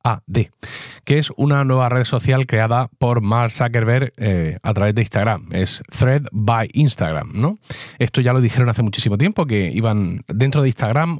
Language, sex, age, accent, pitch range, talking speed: Spanish, male, 30-49, Spanish, 110-140 Hz, 170 wpm